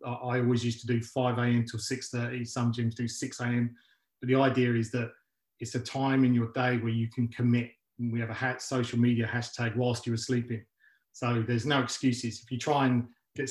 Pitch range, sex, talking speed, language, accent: 120-130 Hz, male, 225 wpm, English, British